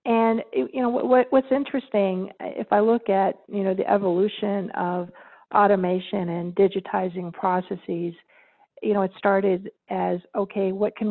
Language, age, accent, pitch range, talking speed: English, 50-69, American, 180-210 Hz, 145 wpm